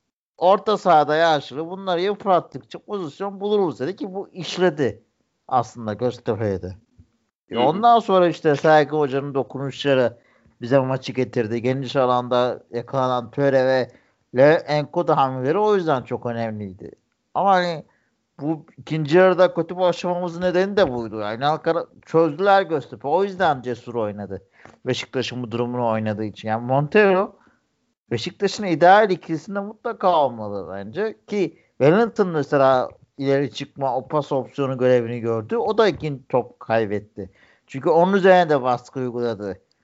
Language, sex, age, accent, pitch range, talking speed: Turkish, male, 50-69, native, 120-180 Hz, 130 wpm